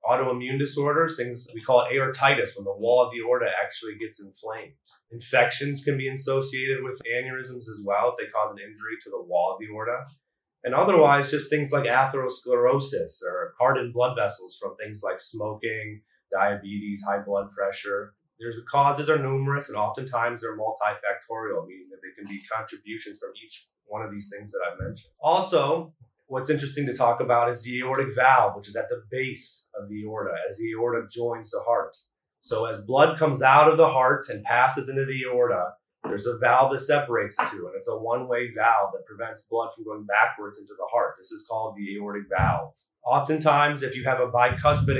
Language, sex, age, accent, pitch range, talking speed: English, male, 30-49, American, 110-140 Hz, 195 wpm